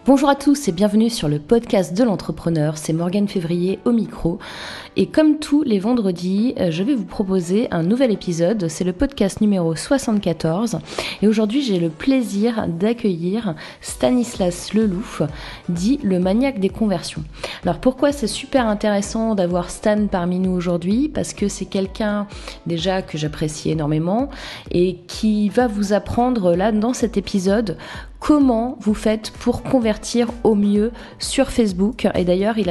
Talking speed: 155 wpm